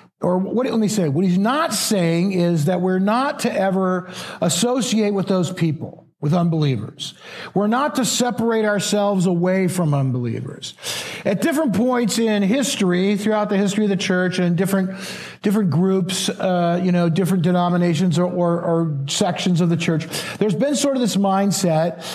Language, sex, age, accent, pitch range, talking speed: English, male, 50-69, American, 180-225 Hz, 170 wpm